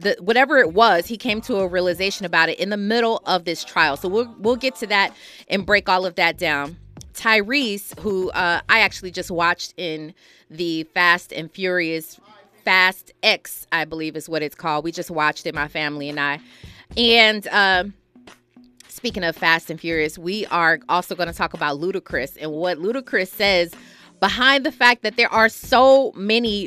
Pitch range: 170-225 Hz